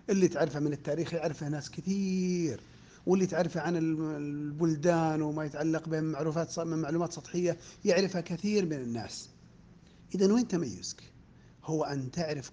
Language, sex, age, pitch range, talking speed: Arabic, male, 40-59, 135-175 Hz, 120 wpm